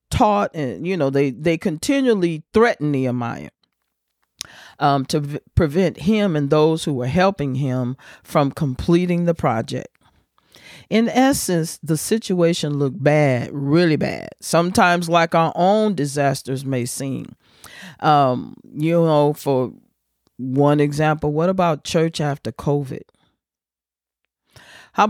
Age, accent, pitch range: 40-59, American, 140-175 Hz